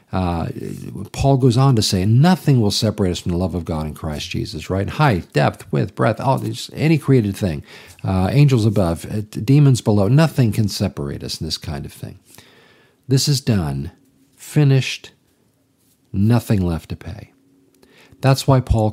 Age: 50-69